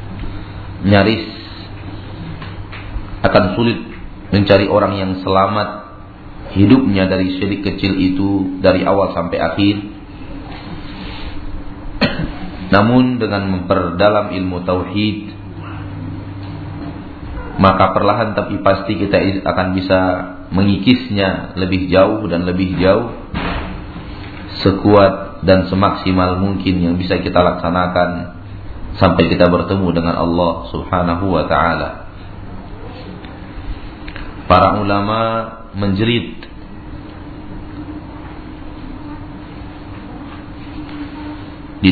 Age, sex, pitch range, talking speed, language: 40-59, male, 95-100 Hz, 75 wpm, Malay